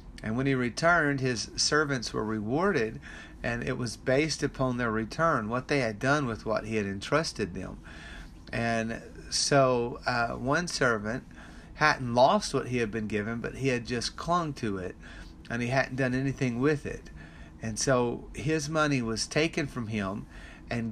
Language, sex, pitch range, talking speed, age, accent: English, male, 105-135 Hz, 170 wpm, 30-49, American